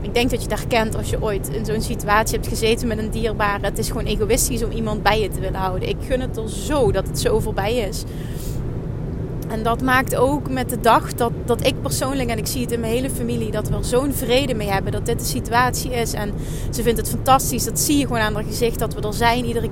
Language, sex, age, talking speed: Dutch, female, 30-49, 260 wpm